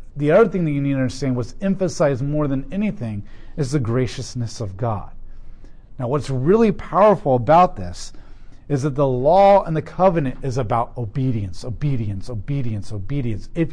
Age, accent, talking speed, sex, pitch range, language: 40-59, American, 165 wpm, male, 115-155 Hz, English